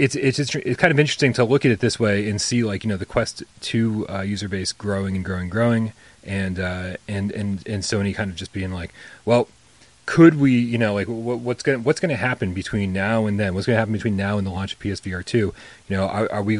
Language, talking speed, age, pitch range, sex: English, 270 wpm, 30-49, 100-125 Hz, male